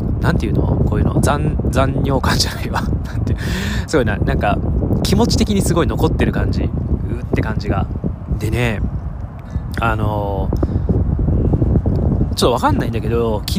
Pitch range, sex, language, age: 90-115 Hz, male, Japanese, 20-39